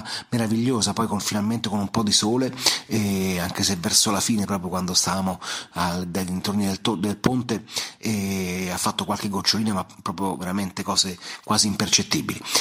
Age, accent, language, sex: 40-59, native, Italian, male